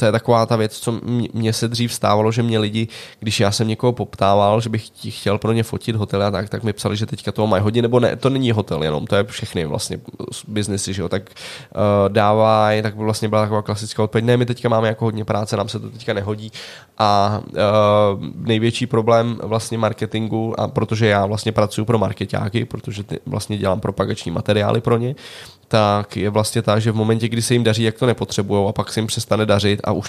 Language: Czech